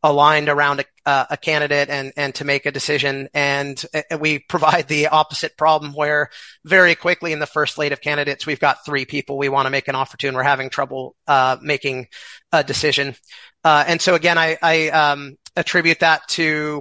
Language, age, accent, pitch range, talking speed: English, 30-49, American, 145-170 Hz, 200 wpm